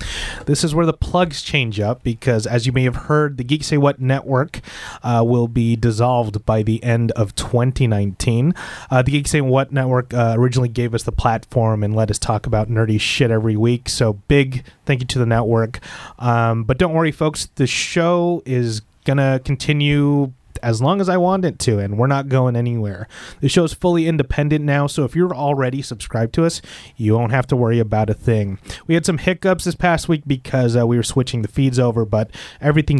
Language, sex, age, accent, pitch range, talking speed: English, male, 30-49, American, 115-140 Hz, 210 wpm